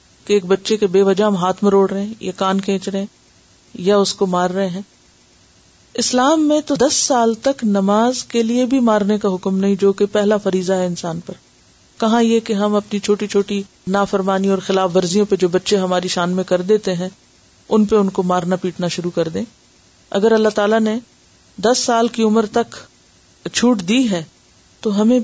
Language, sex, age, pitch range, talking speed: Urdu, female, 40-59, 190-235 Hz, 200 wpm